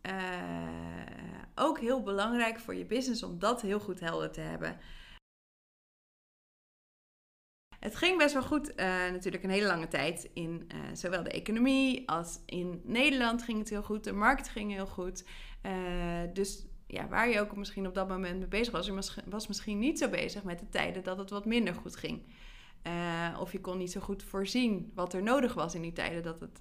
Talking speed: 195 wpm